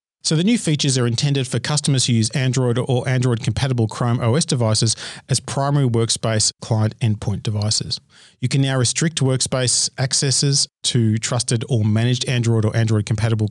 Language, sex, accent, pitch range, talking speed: English, male, Australian, 115-145 Hz, 155 wpm